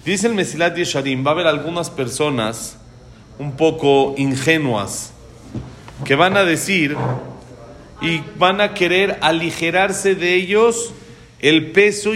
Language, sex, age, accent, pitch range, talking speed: Spanish, male, 40-59, Mexican, 145-210 Hz, 125 wpm